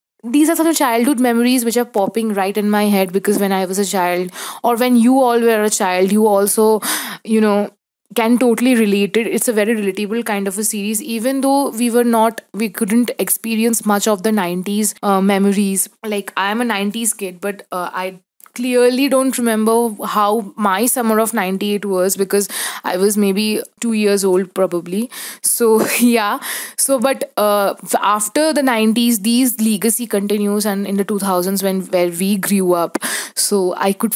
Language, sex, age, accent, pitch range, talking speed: English, female, 20-39, Indian, 195-230 Hz, 185 wpm